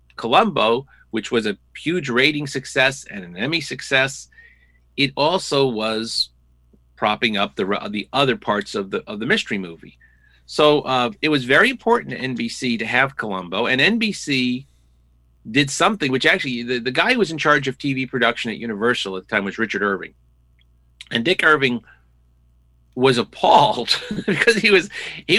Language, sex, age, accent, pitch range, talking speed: English, male, 40-59, American, 100-145 Hz, 165 wpm